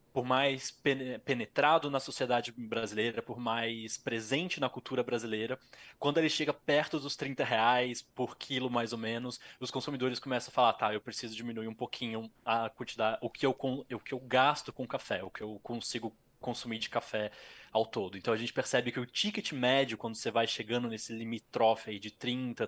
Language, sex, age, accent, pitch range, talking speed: Portuguese, male, 20-39, Brazilian, 115-130 Hz, 190 wpm